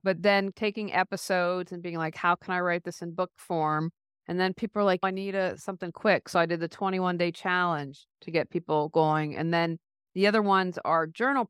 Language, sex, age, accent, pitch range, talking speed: English, female, 50-69, American, 160-185 Hz, 220 wpm